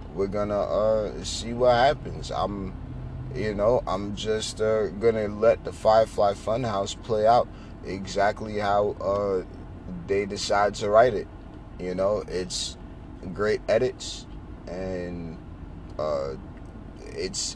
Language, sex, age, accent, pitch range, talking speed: English, male, 30-49, American, 95-120 Hz, 120 wpm